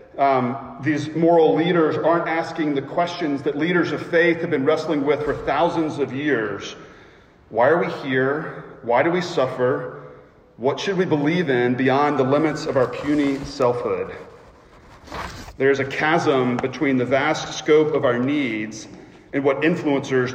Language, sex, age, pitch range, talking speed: English, male, 40-59, 130-160 Hz, 160 wpm